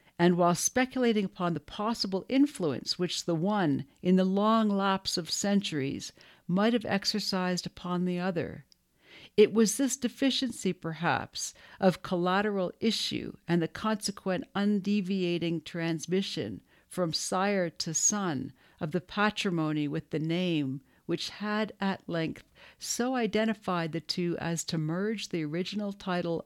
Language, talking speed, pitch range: English, 135 wpm, 155-195 Hz